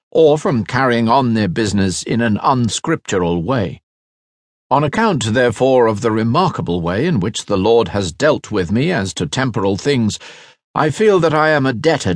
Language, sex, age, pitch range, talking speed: English, male, 50-69, 100-145 Hz, 180 wpm